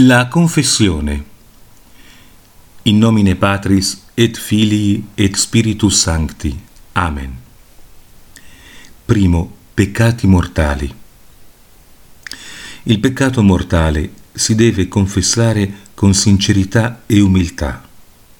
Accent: native